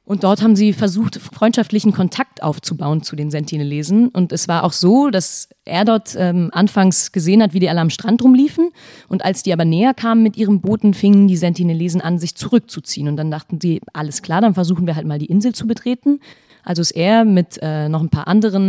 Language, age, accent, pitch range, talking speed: German, 30-49, German, 170-215 Hz, 220 wpm